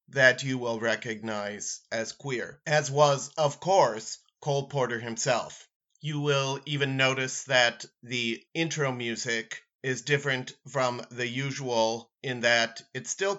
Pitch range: 120-145 Hz